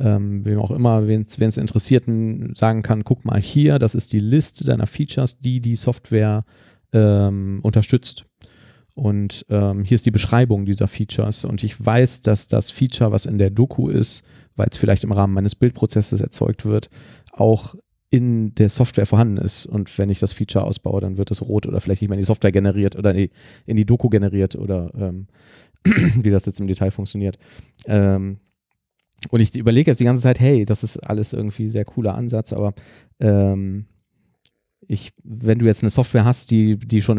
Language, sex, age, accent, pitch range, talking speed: German, male, 40-59, German, 100-115 Hz, 190 wpm